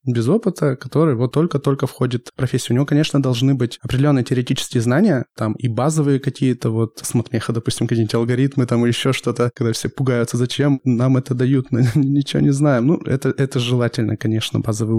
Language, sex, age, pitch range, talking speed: Russian, male, 20-39, 120-140 Hz, 180 wpm